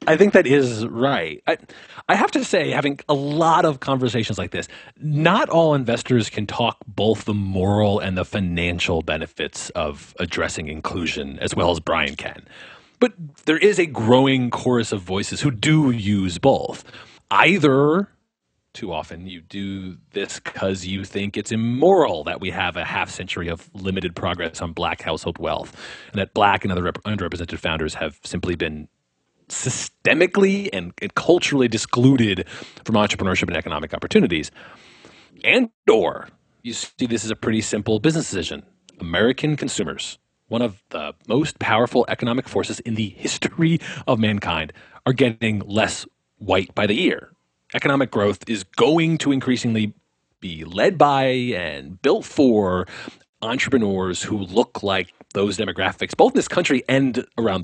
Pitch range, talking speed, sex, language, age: 95-135 Hz, 155 wpm, male, English, 30-49